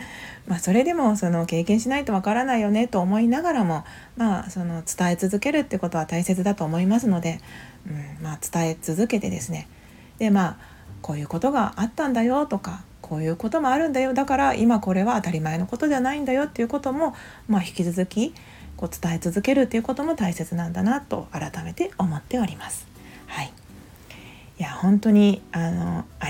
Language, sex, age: Japanese, female, 40-59